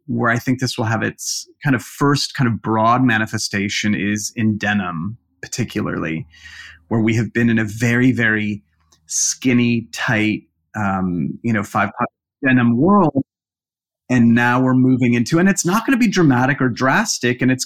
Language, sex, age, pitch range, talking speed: English, male, 30-49, 105-125 Hz, 170 wpm